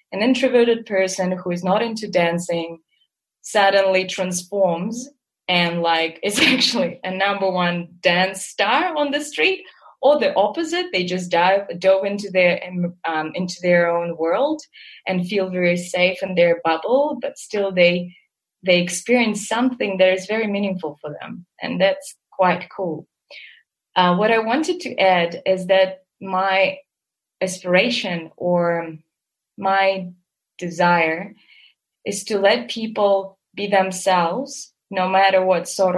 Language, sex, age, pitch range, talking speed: English, female, 20-39, 180-230 Hz, 135 wpm